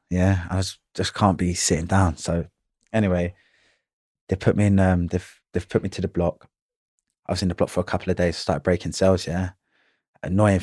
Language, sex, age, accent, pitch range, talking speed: English, male, 20-39, British, 90-105 Hz, 210 wpm